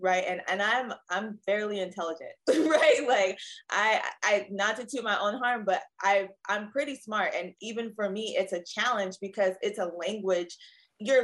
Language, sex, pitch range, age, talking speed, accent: English, female, 195-255 Hz, 20-39, 180 wpm, American